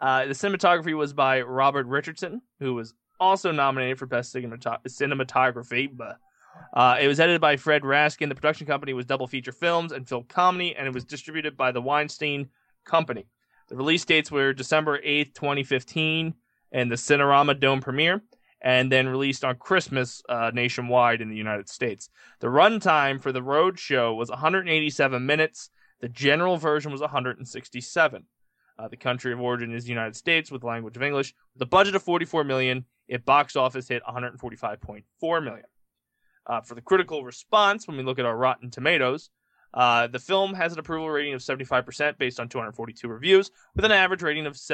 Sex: male